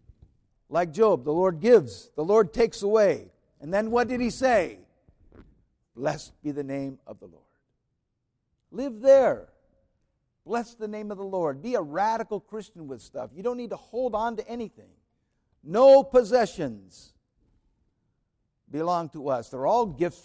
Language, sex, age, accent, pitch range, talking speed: English, male, 60-79, American, 125-190 Hz, 155 wpm